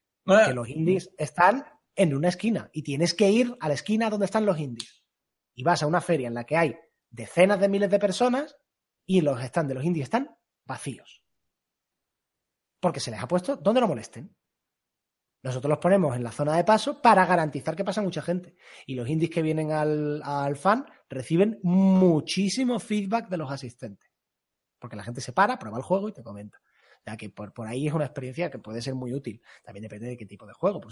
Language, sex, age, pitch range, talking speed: Spanish, male, 30-49, 130-180 Hz, 210 wpm